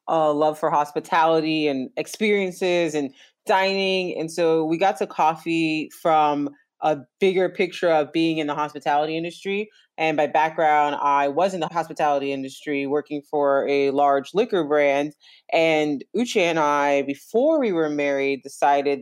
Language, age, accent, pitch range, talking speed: English, 20-39, American, 145-175 Hz, 150 wpm